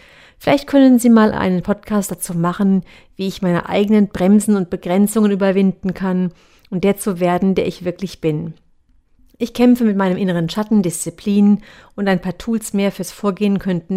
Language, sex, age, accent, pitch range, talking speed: German, female, 50-69, German, 180-210 Hz, 170 wpm